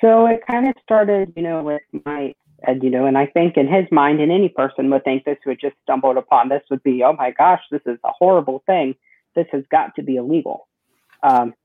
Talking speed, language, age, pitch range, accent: 230 wpm, English, 40-59, 115-145 Hz, American